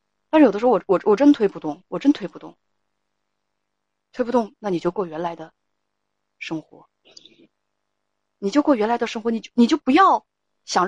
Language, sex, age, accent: Chinese, female, 30-49, native